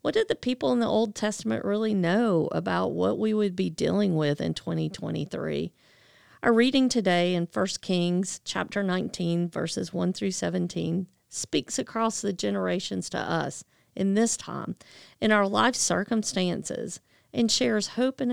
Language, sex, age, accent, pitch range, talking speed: English, female, 40-59, American, 180-230 Hz, 155 wpm